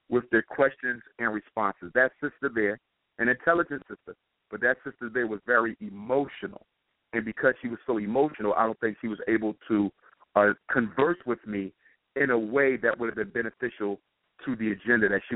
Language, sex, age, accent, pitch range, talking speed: English, male, 50-69, American, 110-170 Hz, 190 wpm